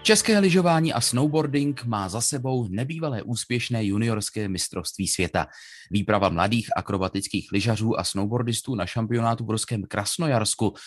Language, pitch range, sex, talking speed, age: Czech, 100-130 Hz, male, 125 wpm, 30-49